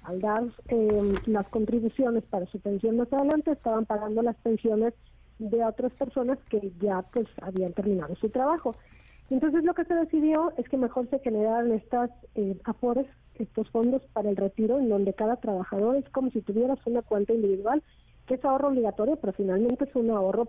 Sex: female